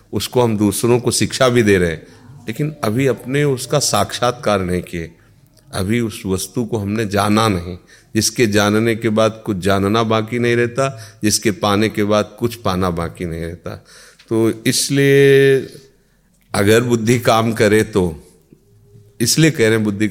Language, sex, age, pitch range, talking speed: Hindi, male, 40-59, 100-120 Hz, 160 wpm